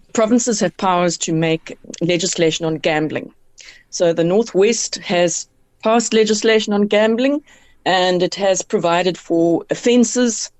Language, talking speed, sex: English, 125 wpm, female